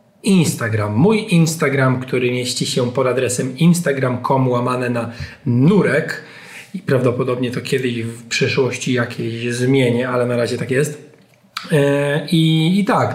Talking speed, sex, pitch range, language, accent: 130 wpm, male, 120-145 Hz, Polish, native